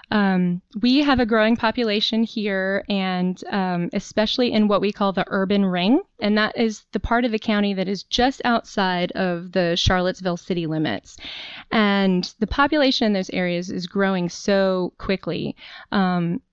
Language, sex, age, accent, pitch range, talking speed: English, female, 20-39, American, 185-225 Hz, 165 wpm